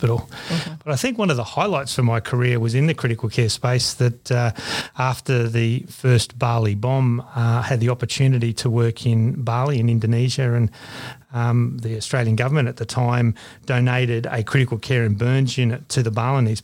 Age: 30-49